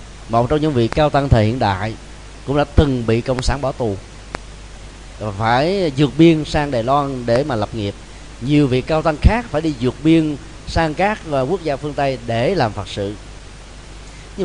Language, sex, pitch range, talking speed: Vietnamese, male, 115-155 Hz, 195 wpm